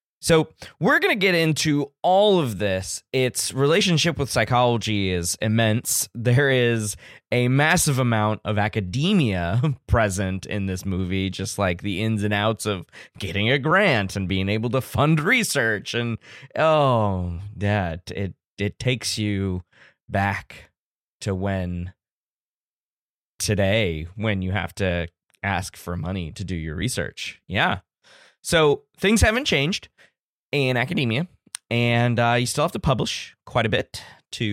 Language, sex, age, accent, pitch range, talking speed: English, male, 20-39, American, 100-140 Hz, 145 wpm